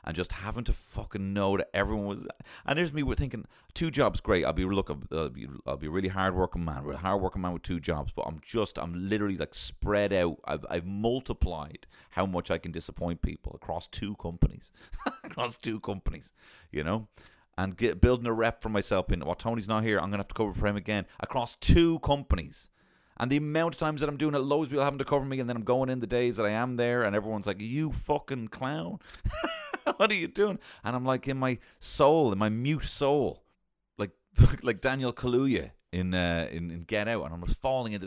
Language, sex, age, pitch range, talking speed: English, male, 30-49, 95-135 Hz, 235 wpm